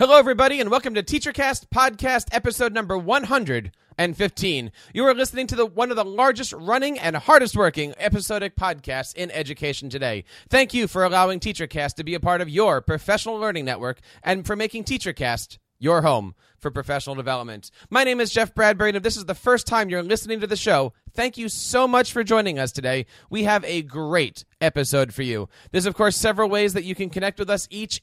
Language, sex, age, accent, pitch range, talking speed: English, male, 30-49, American, 150-220 Hz, 205 wpm